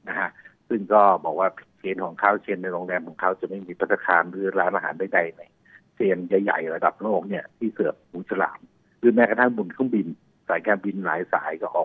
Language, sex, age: Thai, male, 60-79